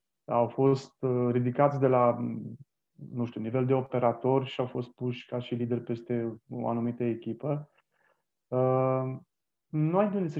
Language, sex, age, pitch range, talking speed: Romanian, male, 30-49, 120-150 Hz, 145 wpm